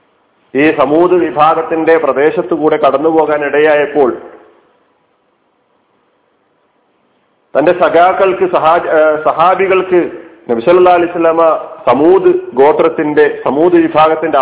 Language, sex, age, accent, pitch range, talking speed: Malayalam, male, 40-59, native, 150-180 Hz, 70 wpm